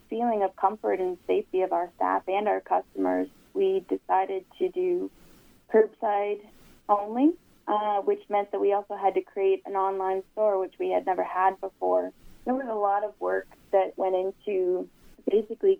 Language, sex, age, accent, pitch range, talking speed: English, female, 20-39, American, 185-220 Hz, 170 wpm